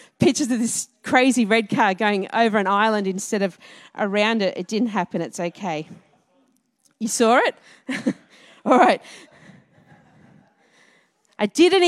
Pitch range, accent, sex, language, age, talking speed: 230-295 Hz, Australian, female, English, 40-59, 130 wpm